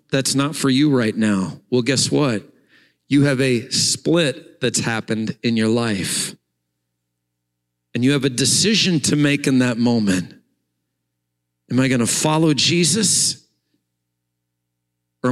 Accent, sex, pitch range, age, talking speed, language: American, male, 125-170 Hz, 40-59, 135 wpm, English